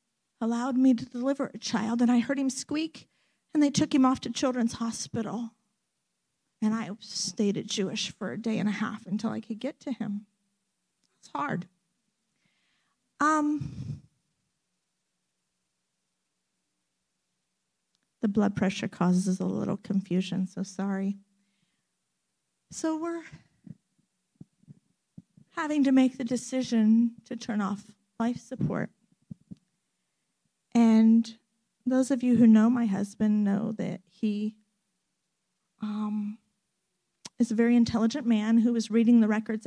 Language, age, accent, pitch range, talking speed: English, 50-69, American, 200-235 Hz, 125 wpm